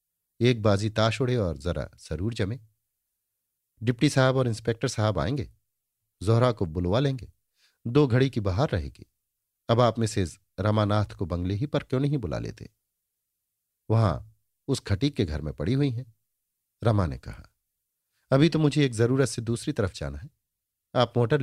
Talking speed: 165 wpm